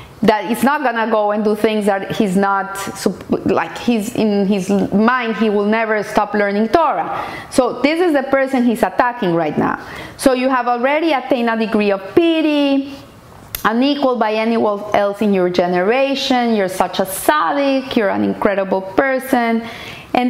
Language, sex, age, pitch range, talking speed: English, female, 40-59, 205-265 Hz, 165 wpm